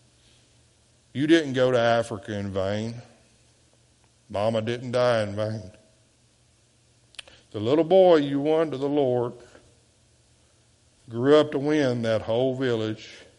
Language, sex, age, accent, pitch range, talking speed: English, male, 60-79, American, 110-125 Hz, 120 wpm